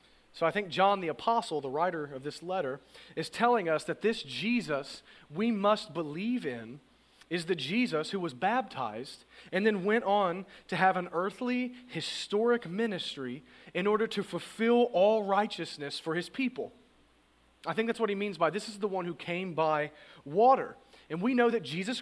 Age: 30-49